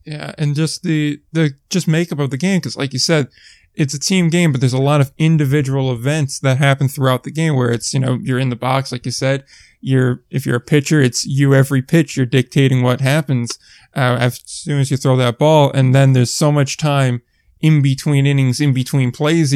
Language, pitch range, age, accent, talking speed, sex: English, 130-150 Hz, 20-39, American, 225 wpm, male